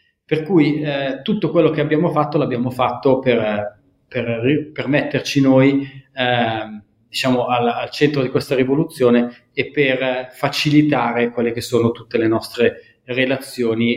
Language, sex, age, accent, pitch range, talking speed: Italian, male, 40-59, native, 120-150 Hz, 135 wpm